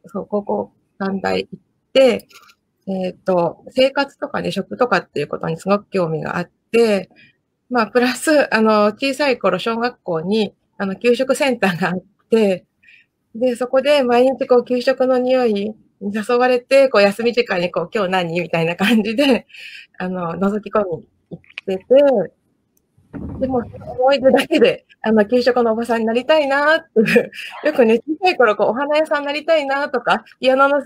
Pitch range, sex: 195-260 Hz, female